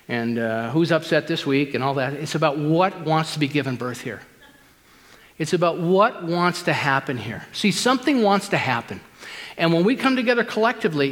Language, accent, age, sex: English, American, 50-69, male